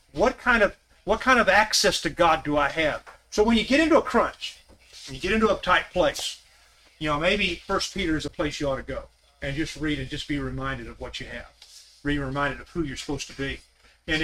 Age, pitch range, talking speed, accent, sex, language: 40-59, 145-175 Hz, 245 wpm, American, male, English